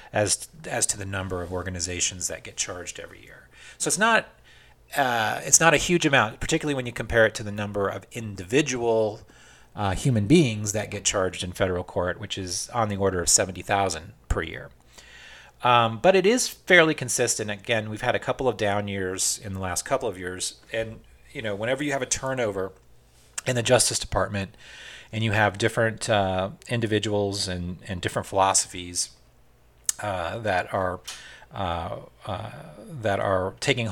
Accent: American